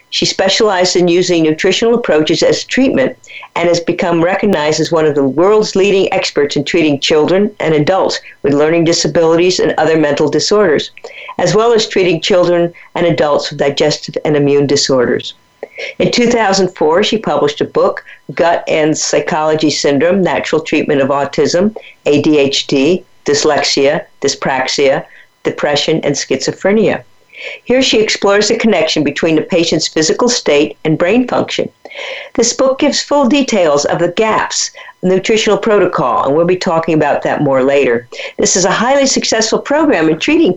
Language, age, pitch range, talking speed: English, 50-69, 155-215 Hz, 150 wpm